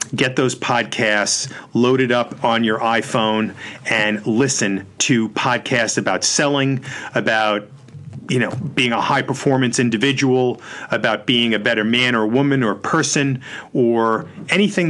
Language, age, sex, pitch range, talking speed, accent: English, 40-59, male, 115-140 Hz, 135 wpm, American